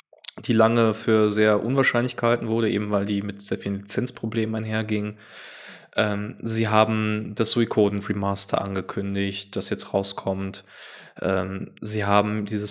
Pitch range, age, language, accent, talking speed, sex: 100-110 Hz, 20-39, German, German, 130 wpm, male